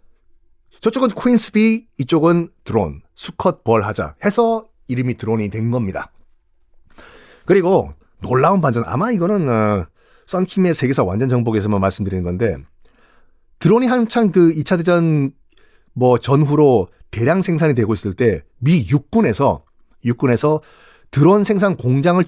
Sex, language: male, Korean